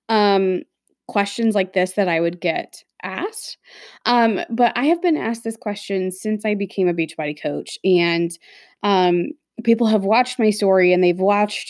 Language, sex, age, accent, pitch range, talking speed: English, female, 20-39, American, 180-230 Hz, 170 wpm